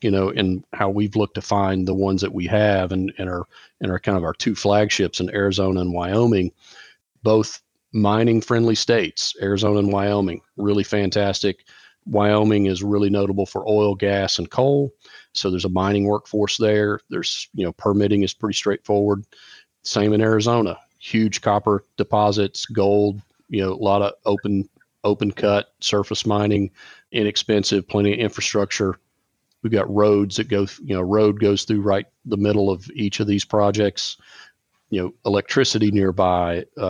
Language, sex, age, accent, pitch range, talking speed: English, male, 40-59, American, 95-105 Hz, 160 wpm